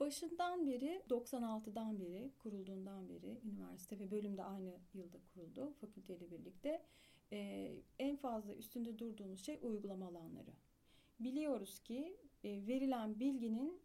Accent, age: native, 40-59